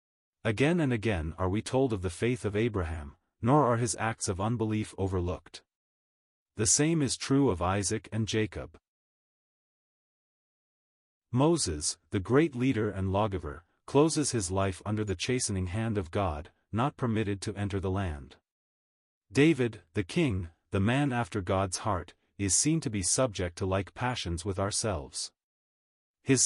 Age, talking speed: 40-59, 150 wpm